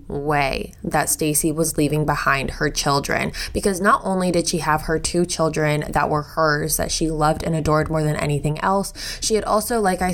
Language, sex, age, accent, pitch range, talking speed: English, female, 20-39, American, 160-195 Hz, 200 wpm